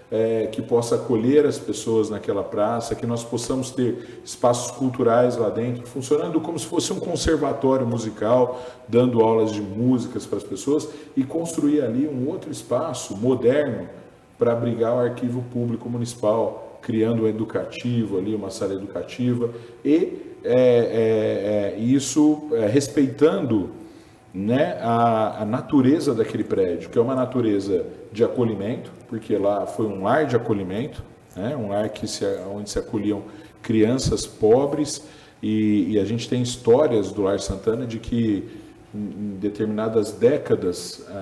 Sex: male